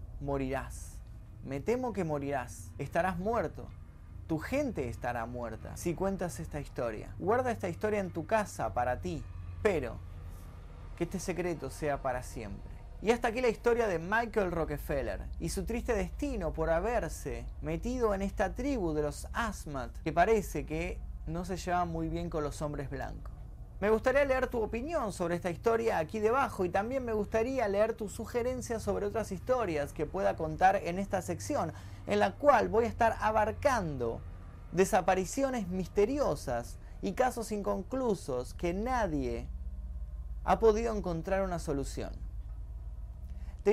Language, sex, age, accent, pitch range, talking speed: Spanish, male, 20-39, Argentinian, 135-220 Hz, 150 wpm